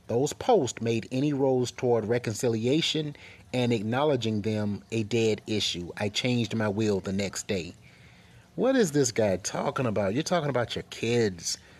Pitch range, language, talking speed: 105-130 Hz, English, 160 wpm